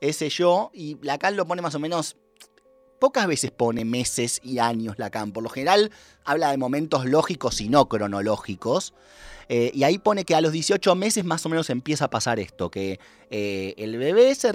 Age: 30-49